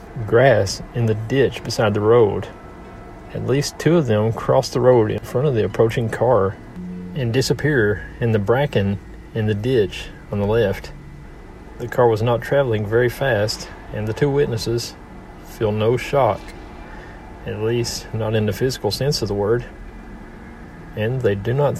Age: 40-59